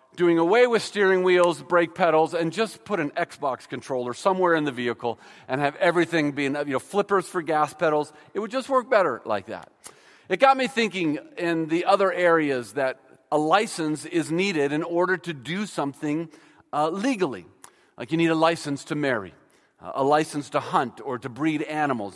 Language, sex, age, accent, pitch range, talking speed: English, male, 40-59, American, 150-195 Hz, 185 wpm